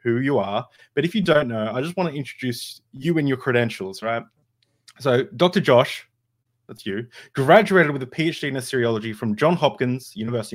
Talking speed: 190 wpm